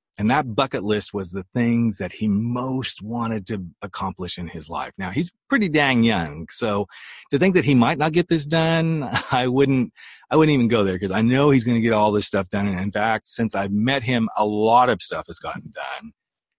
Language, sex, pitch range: English, male, 95-130 Hz